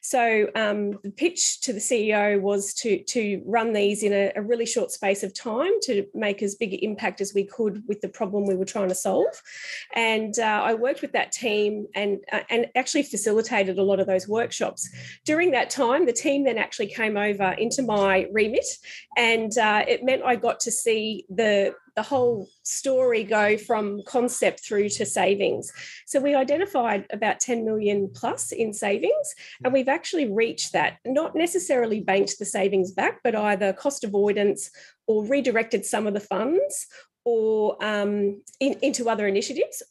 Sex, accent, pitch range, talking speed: female, Australian, 200-245 Hz, 175 wpm